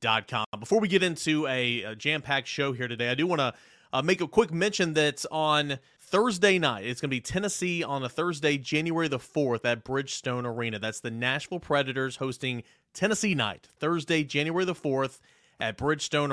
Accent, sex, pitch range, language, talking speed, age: American, male, 125-155 Hz, English, 180 wpm, 30-49